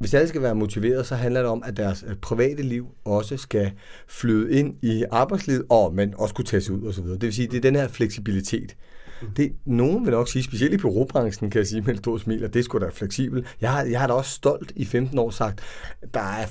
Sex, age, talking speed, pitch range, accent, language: male, 30-49, 250 wpm, 105-135 Hz, native, Danish